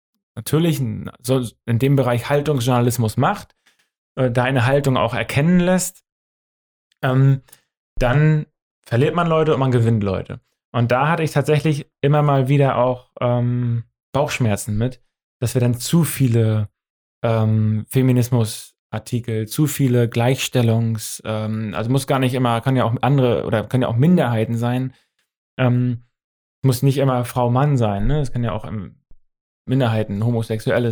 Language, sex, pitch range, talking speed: German, male, 115-140 Hz, 130 wpm